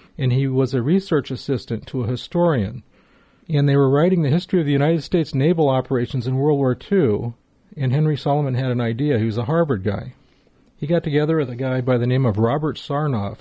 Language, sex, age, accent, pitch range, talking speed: English, male, 40-59, American, 125-150 Hz, 215 wpm